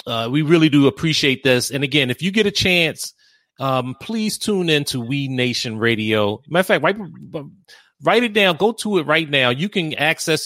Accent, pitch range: American, 125-165 Hz